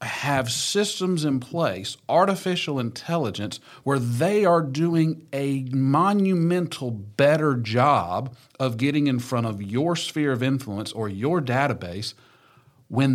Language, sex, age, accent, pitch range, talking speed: English, male, 40-59, American, 115-140 Hz, 125 wpm